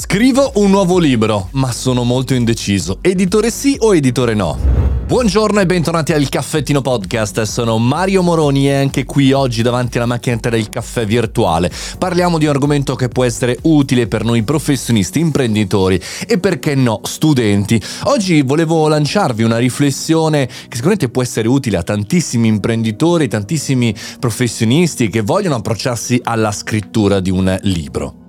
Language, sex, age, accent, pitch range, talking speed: Italian, male, 30-49, native, 110-145 Hz, 150 wpm